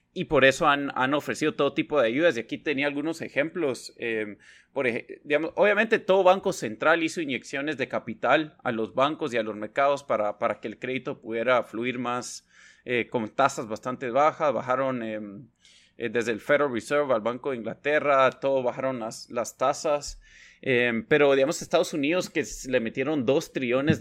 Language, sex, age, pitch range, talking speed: Spanish, male, 20-39, 115-150 Hz, 180 wpm